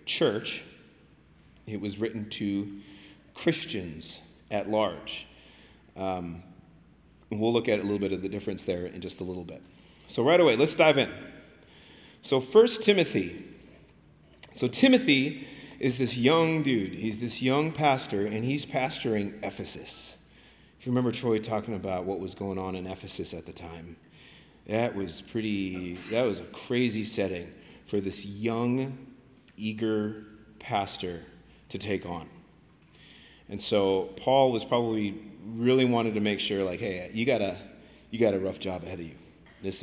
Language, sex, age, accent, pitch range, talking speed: English, male, 40-59, American, 95-125 Hz, 155 wpm